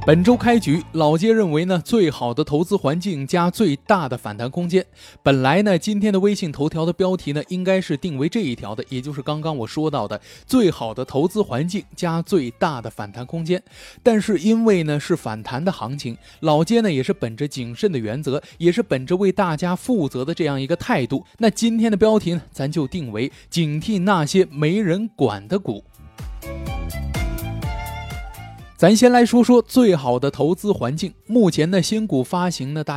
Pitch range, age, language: 135-195 Hz, 20-39, Chinese